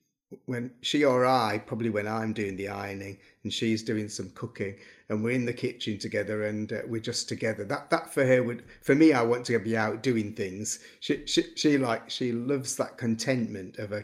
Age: 40-59